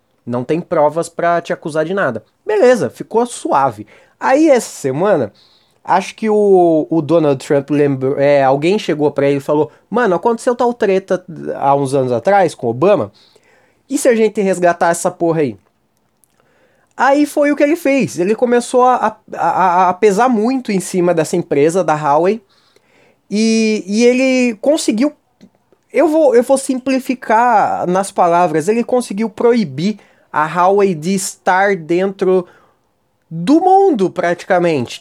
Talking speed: 145 wpm